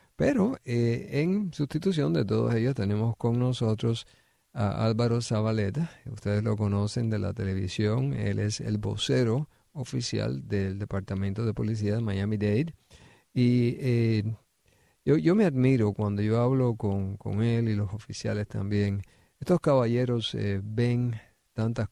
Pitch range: 105-125 Hz